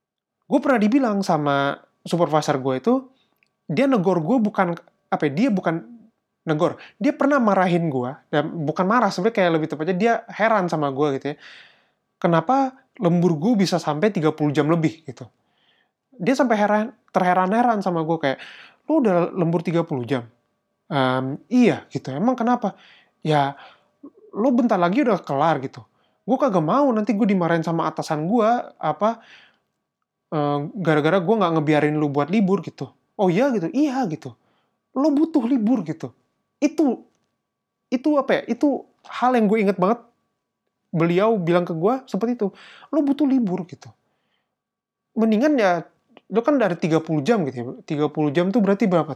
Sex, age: male, 20-39